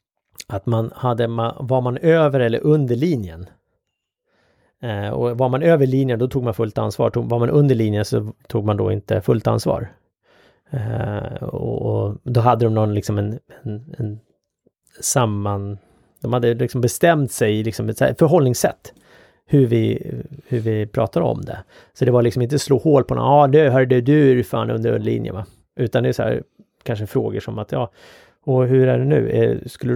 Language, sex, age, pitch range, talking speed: Swedish, male, 30-49, 110-135 Hz, 180 wpm